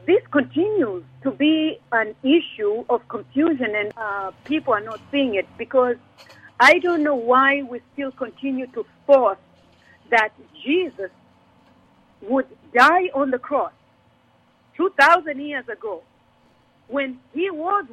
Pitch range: 250-330 Hz